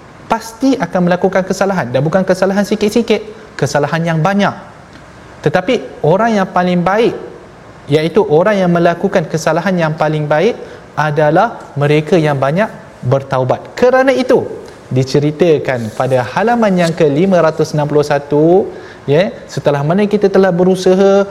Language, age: Malayalam, 30-49